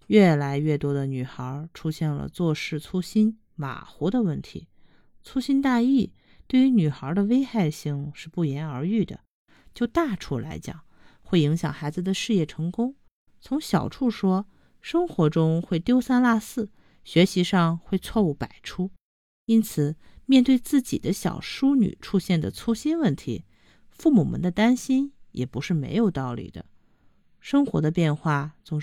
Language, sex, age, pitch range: Chinese, female, 50-69, 150-235 Hz